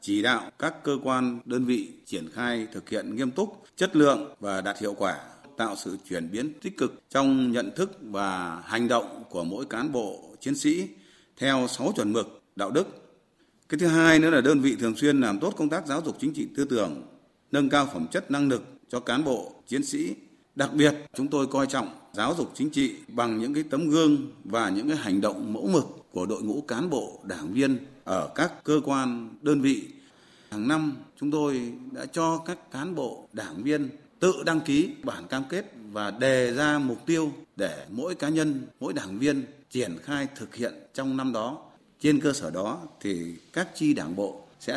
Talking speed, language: 205 wpm, Vietnamese